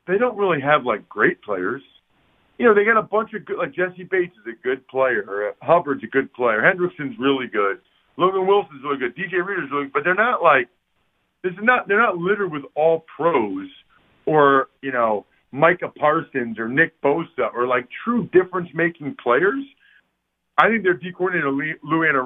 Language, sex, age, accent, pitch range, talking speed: English, male, 50-69, American, 145-205 Hz, 190 wpm